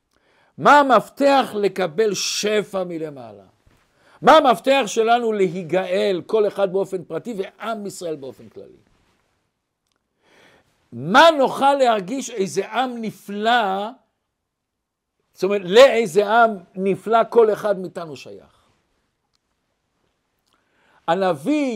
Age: 60-79